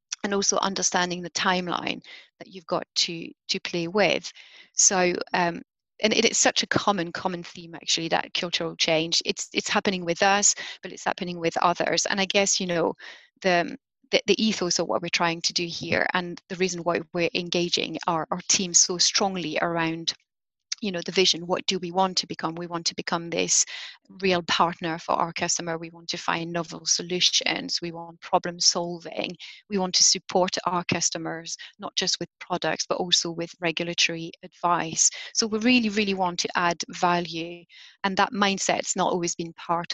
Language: English